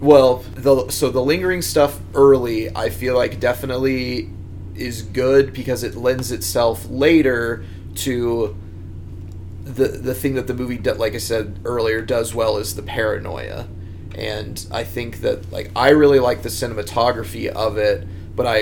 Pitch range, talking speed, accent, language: 95-130 Hz, 155 wpm, American, English